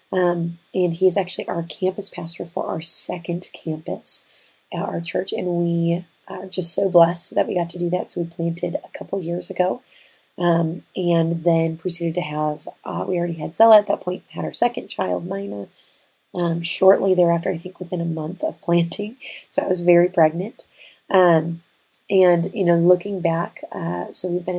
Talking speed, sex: 190 wpm, female